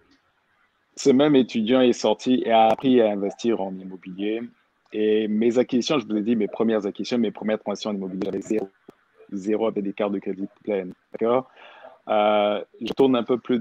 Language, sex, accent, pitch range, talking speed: French, male, French, 105-125 Hz, 190 wpm